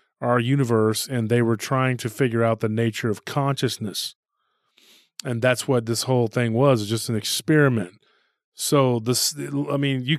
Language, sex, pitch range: English, male, 115-140 Hz